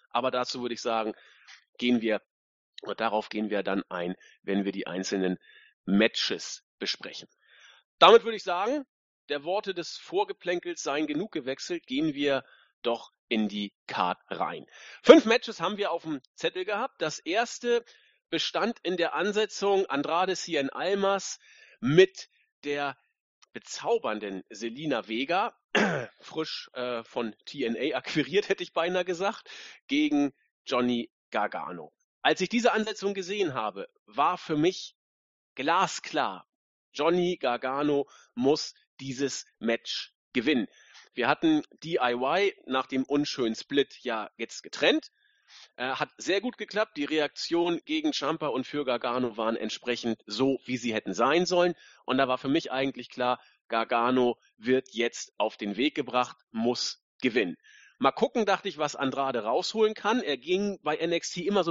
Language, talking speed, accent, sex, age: German, 140 wpm, German, male, 40-59